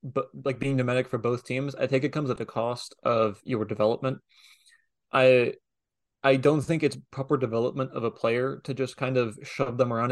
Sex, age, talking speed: male, 20-39, 200 wpm